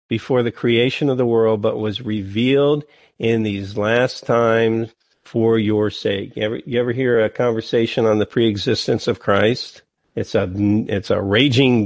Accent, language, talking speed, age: American, English, 155 wpm, 50-69